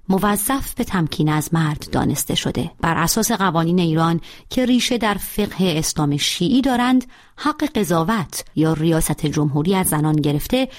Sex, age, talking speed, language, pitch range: female, 30-49, 145 wpm, Persian, 155-210 Hz